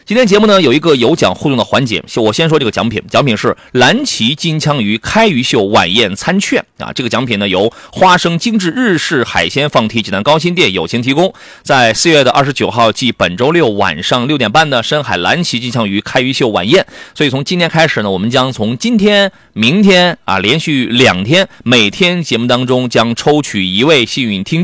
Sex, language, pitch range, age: male, Chinese, 120-195 Hz, 30-49